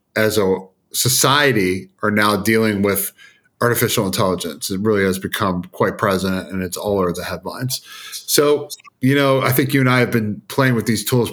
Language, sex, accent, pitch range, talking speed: English, male, American, 95-120 Hz, 185 wpm